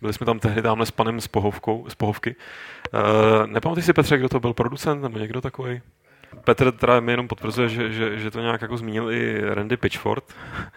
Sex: male